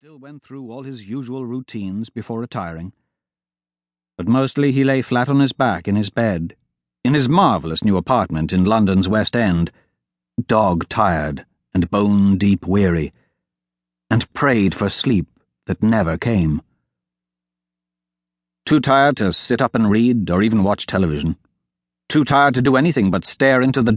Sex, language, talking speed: male, English, 150 wpm